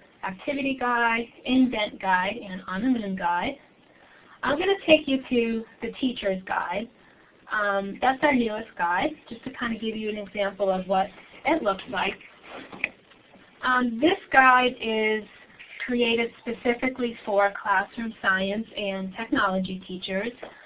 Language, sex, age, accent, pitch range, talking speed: English, female, 10-29, American, 195-240 Hz, 140 wpm